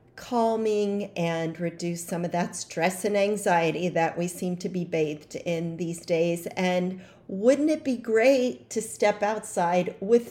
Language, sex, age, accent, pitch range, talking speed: English, female, 40-59, American, 170-210 Hz, 155 wpm